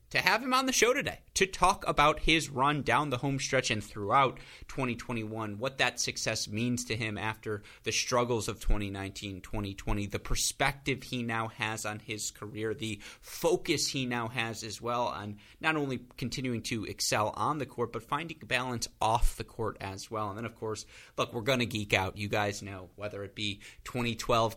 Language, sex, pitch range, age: English, male, 105-125 Hz, 30-49